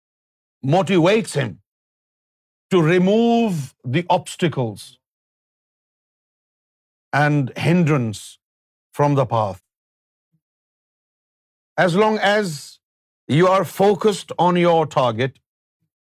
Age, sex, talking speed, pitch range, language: 50-69, male, 75 wpm, 130-195 Hz, Urdu